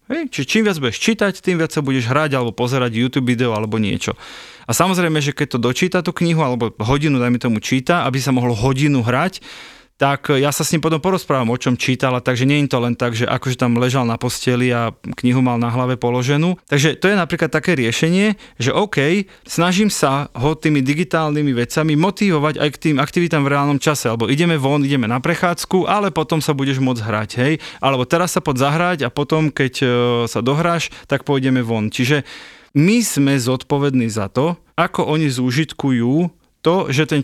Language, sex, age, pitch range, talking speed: Czech, male, 30-49, 125-160 Hz, 195 wpm